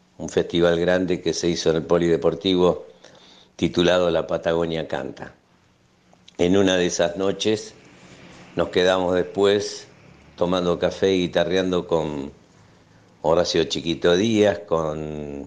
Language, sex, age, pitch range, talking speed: Spanish, male, 60-79, 80-100 Hz, 115 wpm